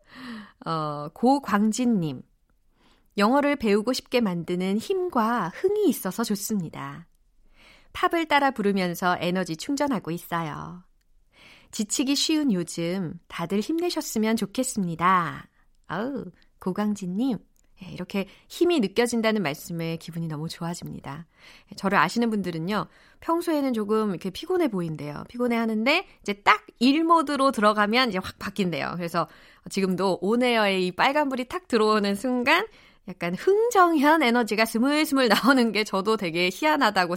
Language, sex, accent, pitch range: Korean, female, native, 175-255 Hz